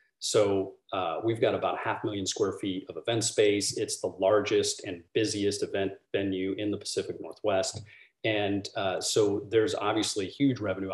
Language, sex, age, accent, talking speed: English, male, 30-49, American, 170 wpm